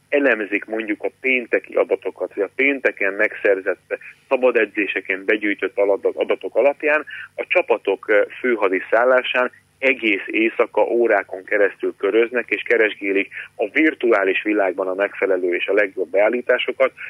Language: Hungarian